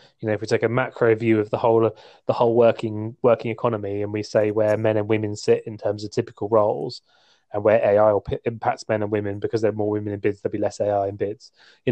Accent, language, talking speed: British, English, 260 wpm